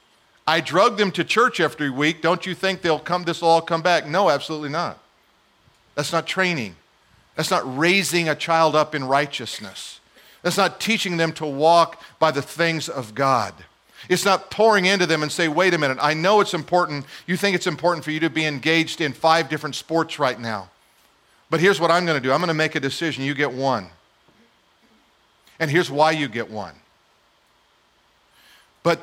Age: 50-69